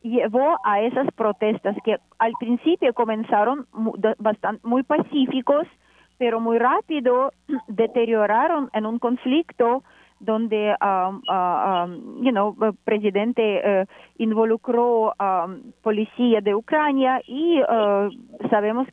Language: Spanish